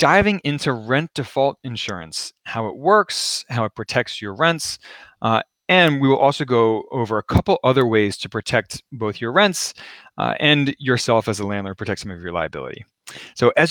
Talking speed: 185 wpm